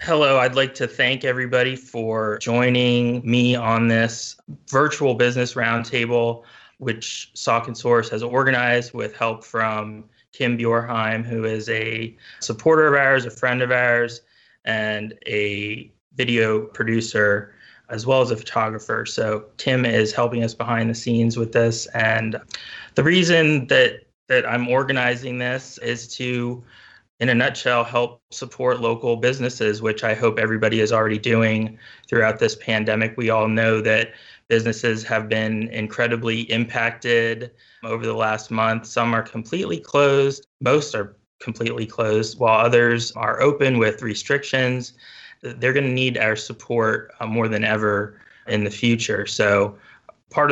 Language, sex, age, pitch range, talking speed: English, male, 20-39, 110-125 Hz, 145 wpm